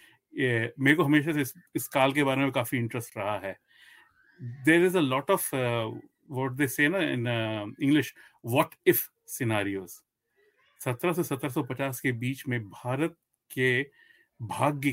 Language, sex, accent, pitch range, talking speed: Hindi, male, native, 120-150 Hz, 115 wpm